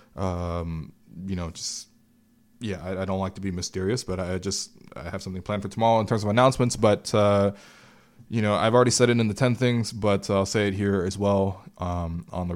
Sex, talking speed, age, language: male, 225 wpm, 20-39, English